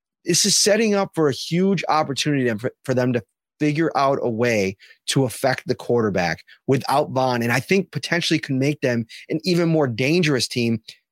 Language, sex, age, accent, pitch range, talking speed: English, male, 30-49, American, 125-165 Hz, 180 wpm